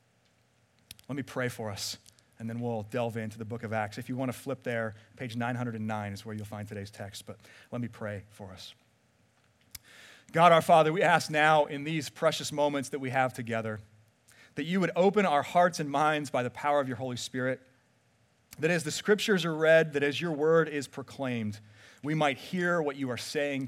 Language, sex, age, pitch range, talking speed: English, male, 30-49, 110-145 Hz, 210 wpm